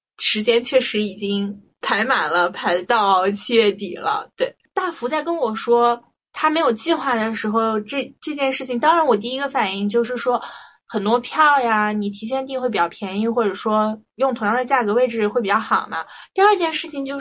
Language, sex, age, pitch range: Chinese, female, 20-39, 220-285 Hz